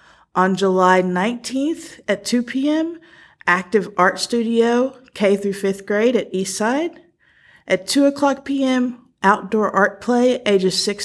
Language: English